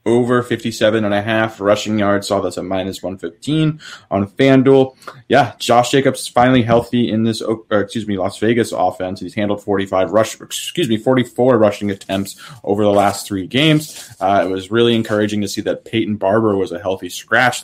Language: English